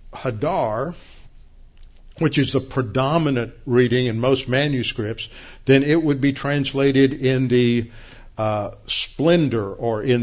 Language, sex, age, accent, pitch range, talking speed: English, male, 60-79, American, 115-135 Hz, 115 wpm